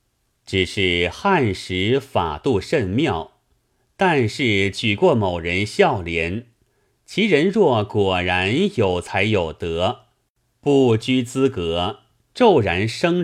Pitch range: 95-130 Hz